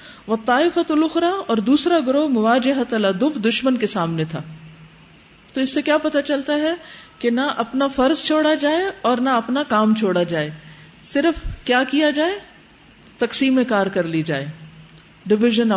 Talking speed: 150 wpm